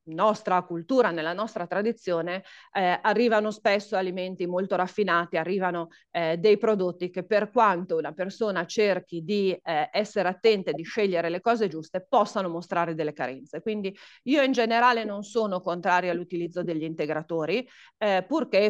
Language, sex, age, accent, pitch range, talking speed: Italian, female, 40-59, native, 170-210 Hz, 150 wpm